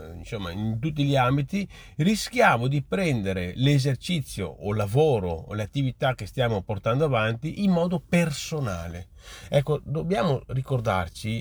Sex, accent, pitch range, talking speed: male, native, 105-150 Hz, 125 wpm